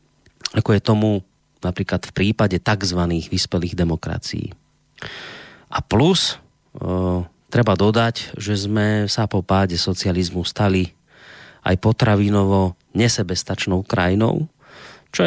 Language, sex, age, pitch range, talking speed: Slovak, male, 30-49, 95-115 Hz, 100 wpm